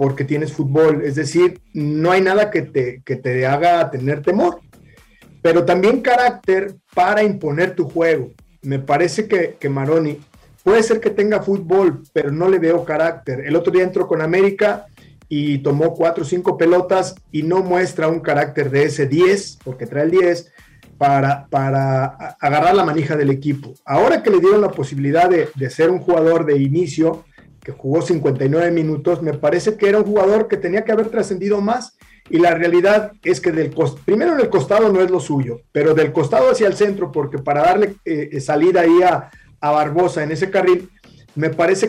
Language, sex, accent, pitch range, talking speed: Spanish, male, Mexican, 145-190 Hz, 185 wpm